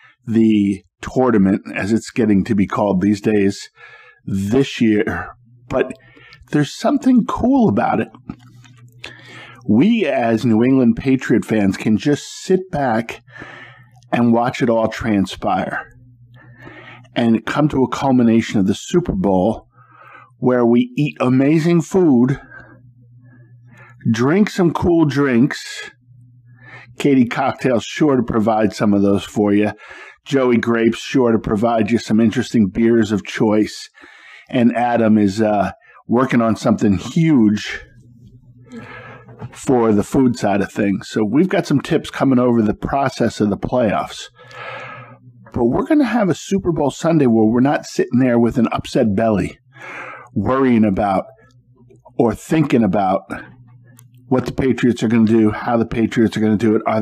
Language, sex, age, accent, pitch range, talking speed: English, male, 50-69, American, 110-130 Hz, 145 wpm